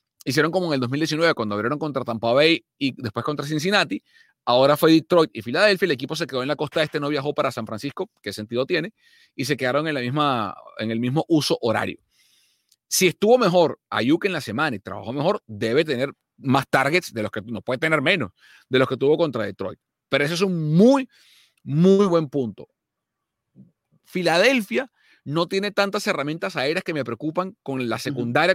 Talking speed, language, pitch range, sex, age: 200 wpm, Spanish, 125-175 Hz, male, 30-49